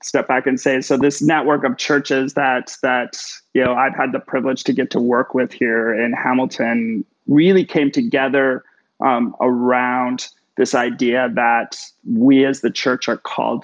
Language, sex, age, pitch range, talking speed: English, male, 30-49, 125-145 Hz, 170 wpm